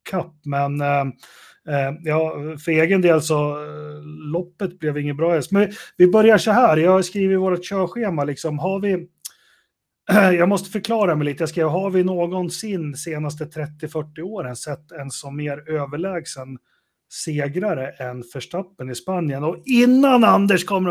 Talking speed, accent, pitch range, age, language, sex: 160 wpm, native, 140-185 Hz, 30-49, Swedish, male